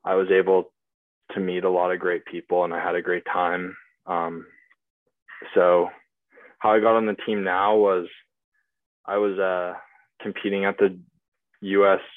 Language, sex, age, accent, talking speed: English, male, 20-39, American, 170 wpm